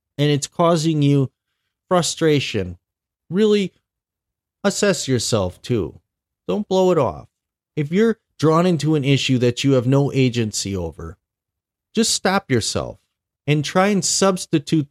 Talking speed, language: 130 wpm, English